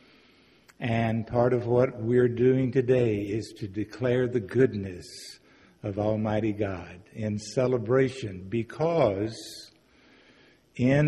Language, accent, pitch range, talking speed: English, American, 105-130 Hz, 105 wpm